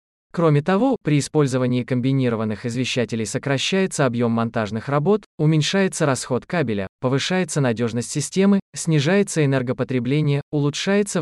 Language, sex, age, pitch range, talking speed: Russian, male, 20-39, 125-170 Hz, 100 wpm